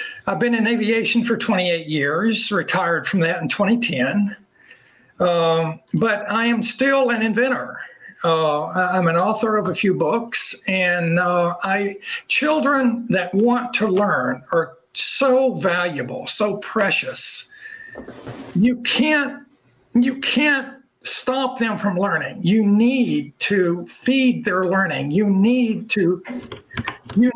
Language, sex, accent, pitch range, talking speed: English, male, American, 185-250 Hz, 125 wpm